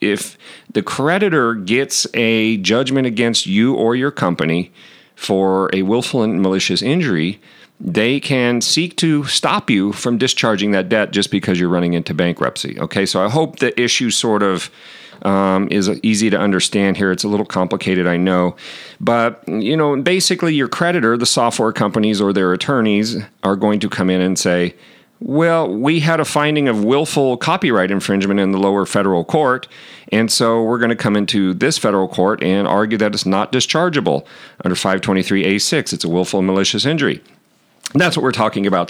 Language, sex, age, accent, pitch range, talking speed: English, male, 40-59, American, 90-115 Hz, 175 wpm